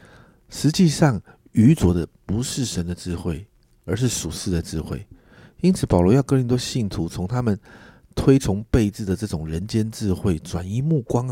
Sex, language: male, Chinese